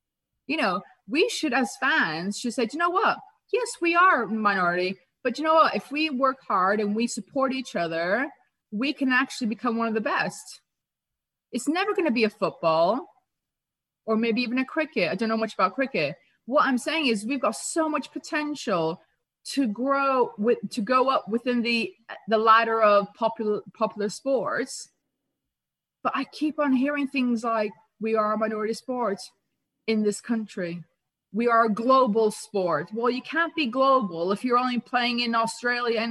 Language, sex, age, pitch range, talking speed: English, female, 30-49, 210-270 Hz, 185 wpm